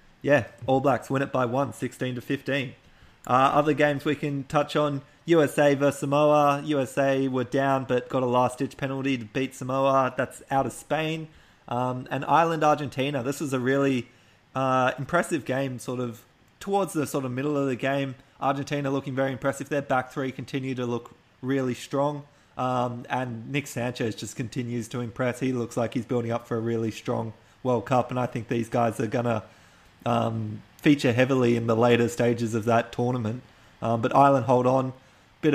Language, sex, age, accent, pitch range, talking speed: English, male, 20-39, Australian, 115-135 Hz, 190 wpm